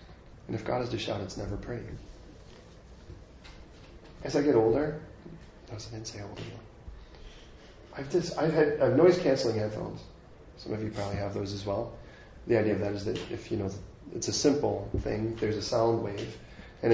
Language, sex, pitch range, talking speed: English, male, 105-125 Hz, 170 wpm